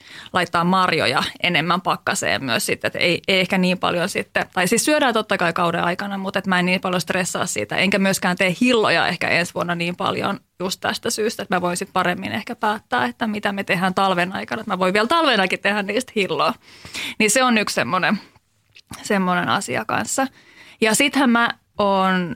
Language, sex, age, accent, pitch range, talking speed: Finnish, female, 20-39, native, 185-245 Hz, 190 wpm